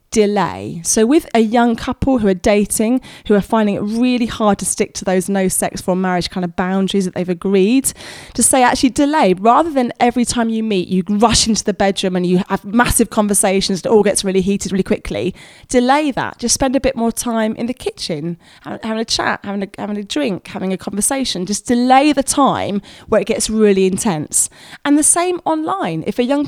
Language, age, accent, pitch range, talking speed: English, 20-39, British, 190-240 Hz, 215 wpm